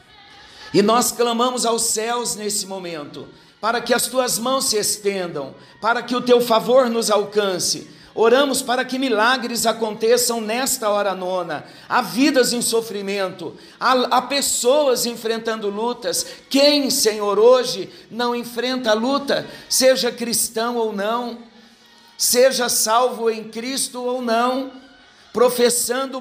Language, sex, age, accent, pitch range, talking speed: Portuguese, male, 50-69, Brazilian, 215-245 Hz, 130 wpm